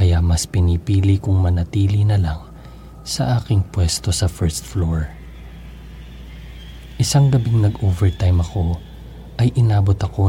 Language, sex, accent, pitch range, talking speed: Filipino, male, native, 80-100 Hz, 115 wpm